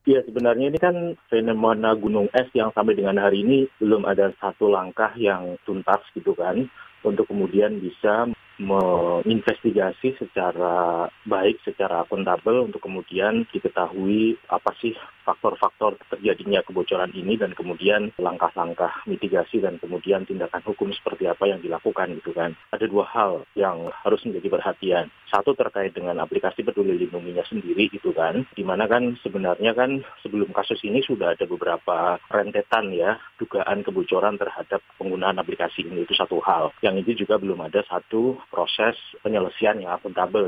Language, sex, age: Indonesian, male, 30-49